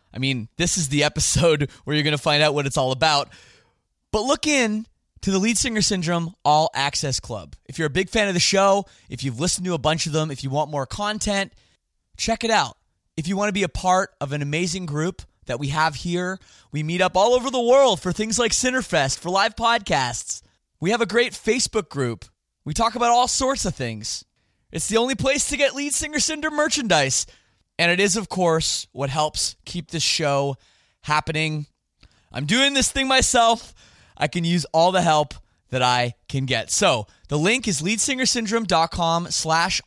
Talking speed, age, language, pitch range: 205 wpm, 20-39, English, 145-210 Hz